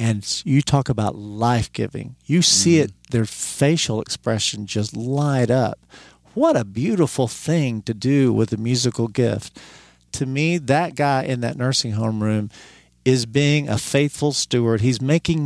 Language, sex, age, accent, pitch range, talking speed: English, male, 50-69, American, 105-140 Hz, 155 wpm